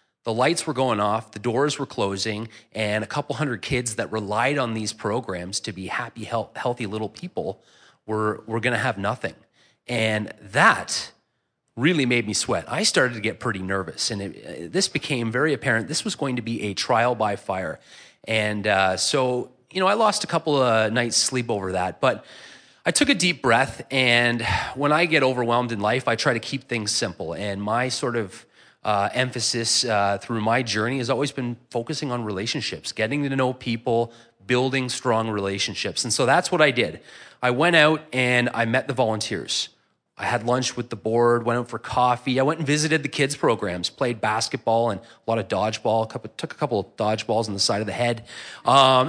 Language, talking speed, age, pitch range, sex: English, 200 wpm, 30-49, 110-130 Hz, male